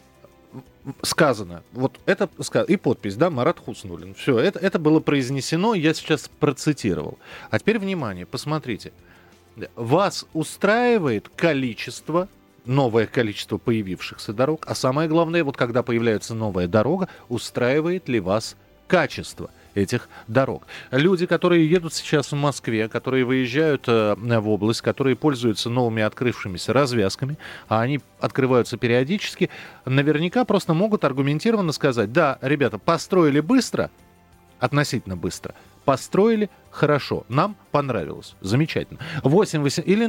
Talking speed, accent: 115 wpm, native